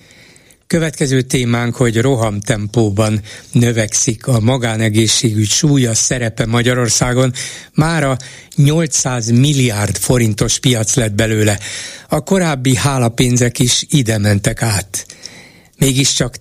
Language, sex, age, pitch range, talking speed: Hungarian, male, 60-79, 115-140 Hz, 100 wpm